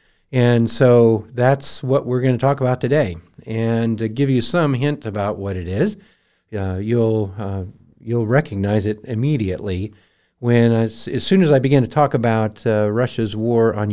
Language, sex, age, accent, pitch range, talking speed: English, male, 50-69, American, 105-130 Hz, 175 wpm